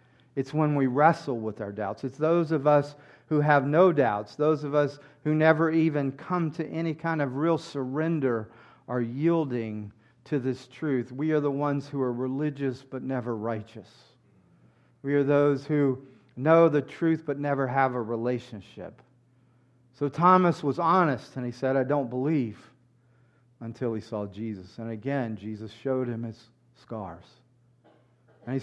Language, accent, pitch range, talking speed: English, American, 120-145 Hz, 165 wpm